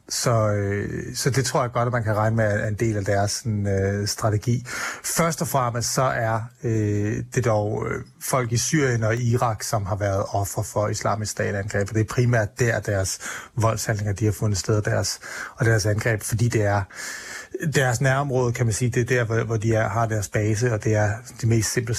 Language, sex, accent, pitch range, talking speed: Danish, male, native, 105-125 Hz, 215 wpm